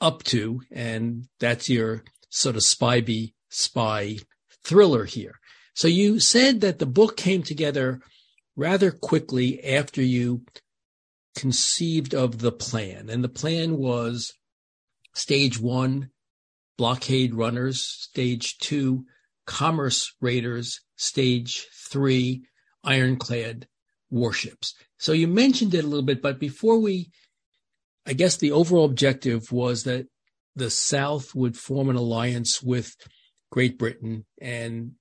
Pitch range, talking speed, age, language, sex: 120-145 Hz, 120 wpm, 50-69, English, male